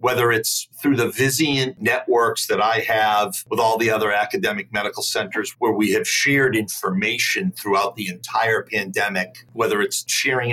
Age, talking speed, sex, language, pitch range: 40-59, 160 wpm, male, English, 110-180 Hz